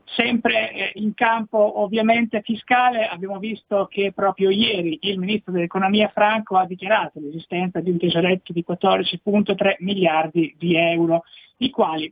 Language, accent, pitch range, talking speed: Italian, native, 175-215 Hz, 135 wpm